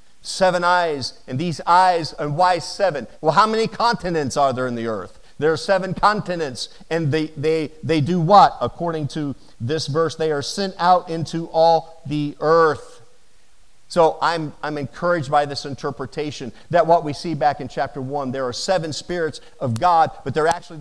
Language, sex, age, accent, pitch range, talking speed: English, male, 50-69, American, 150-200 Hz, 180 wpm